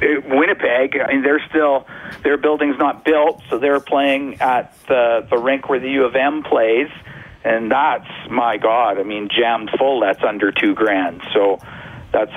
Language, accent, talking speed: English, American, 175 wpm